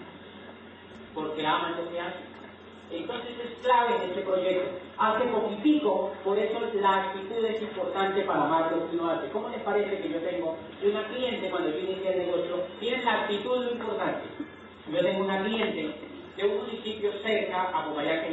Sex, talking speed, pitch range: male, 175 wpm, 150-215 Hz